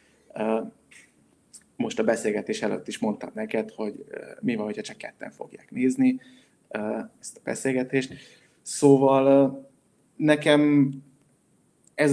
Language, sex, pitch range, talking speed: Hungarian, male, 120-160 Hz, 105 wpm